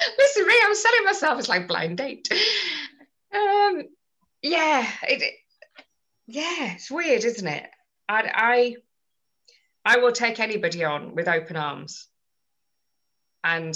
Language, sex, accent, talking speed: English, female, British, 125 wpm